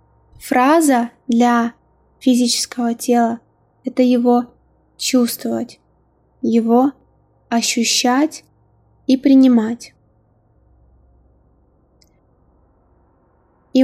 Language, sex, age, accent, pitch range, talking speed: Russian, female, 20-39, native, 225-250 Hz, 55 wpm